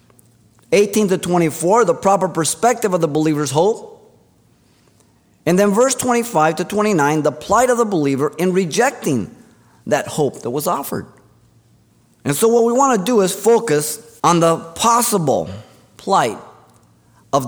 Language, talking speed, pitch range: English, 145 wpm, 125-190 Hz